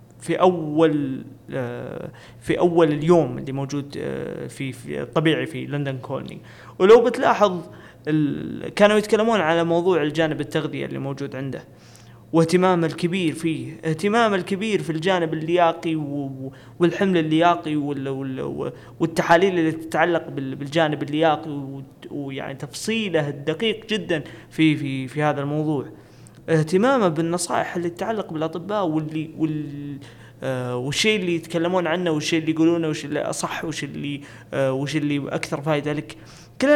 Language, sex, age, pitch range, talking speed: Arabic, male, 20-39, 140-180 Hz, 125 wpm